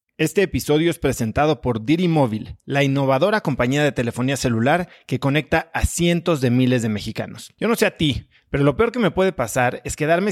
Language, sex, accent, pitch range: Spanish, male, Mexican, 130-170 Hz